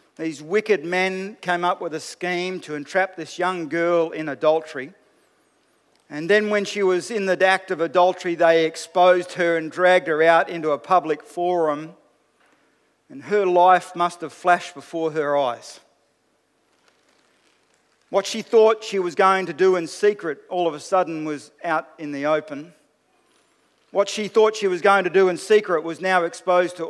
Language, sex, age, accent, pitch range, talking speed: English, male, 50-69, Australian, 155-185 Hz, 175 wpm